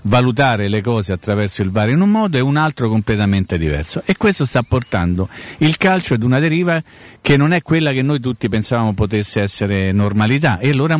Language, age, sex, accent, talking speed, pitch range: Italian, 40-59, male, native, 195 wpm, 105-150 Hz